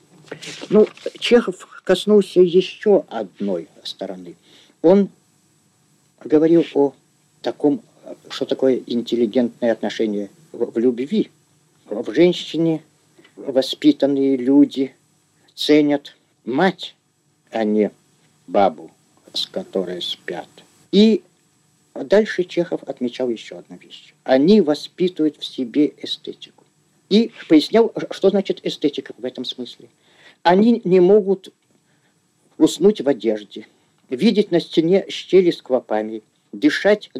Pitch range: 130-180 Hz